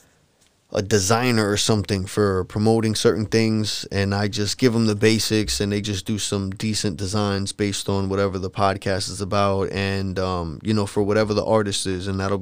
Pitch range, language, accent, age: 95-110 Hz, English, American, 20-39